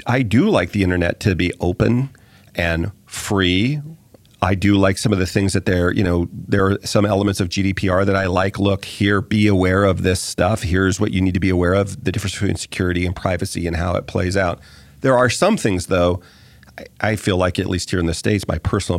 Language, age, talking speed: English, 40-59, 220 wpm